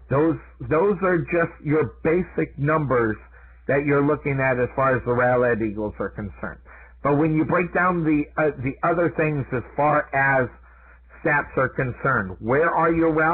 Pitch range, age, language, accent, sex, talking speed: 125-155 Hz, 50-69, English, American, male, 170 wpm